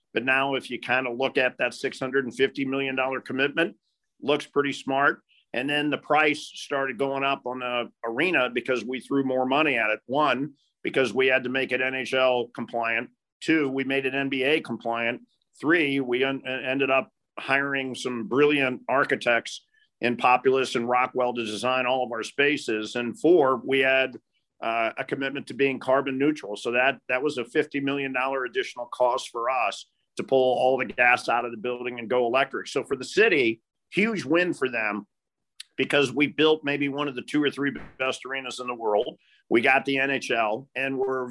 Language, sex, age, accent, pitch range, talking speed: English, male, 50-69, American, 125-140 Hz, 185 wpm